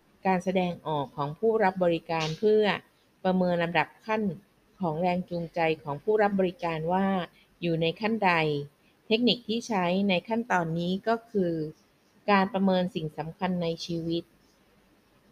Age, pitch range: 20-39, 160-205 Hz